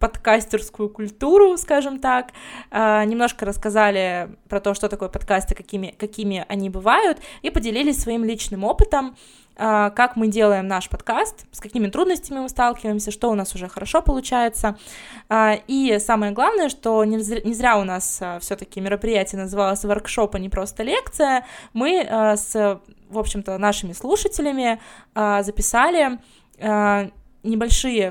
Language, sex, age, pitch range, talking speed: Russian, female, 20-39, 205-255 Hz, 130 wpm